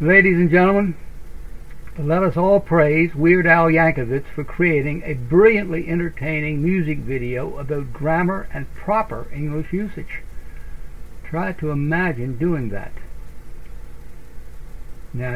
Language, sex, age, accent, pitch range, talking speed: English, male, 60-79, American, 120-165 Hz, 115 wpm